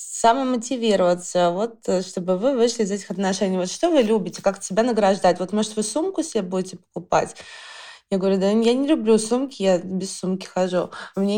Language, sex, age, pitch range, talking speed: Russian, female, 20-39, 190-235 Hz, 175 wpm